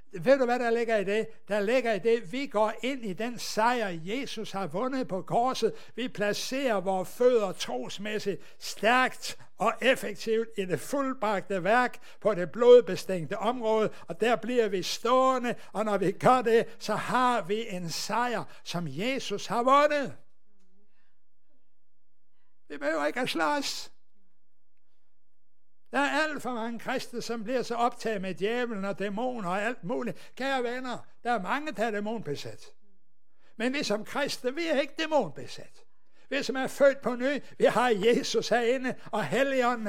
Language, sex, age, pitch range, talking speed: Danish, male, 60-79, 200-245 Hz, 160 wpm